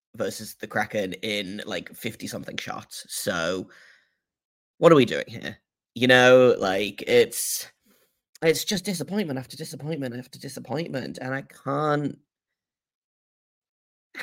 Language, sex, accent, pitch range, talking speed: English, male, British, 115-155 Hz, 115 wpm